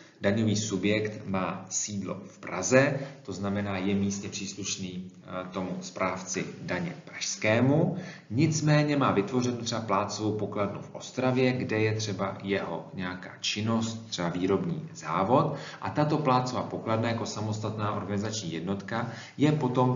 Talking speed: 125 wpm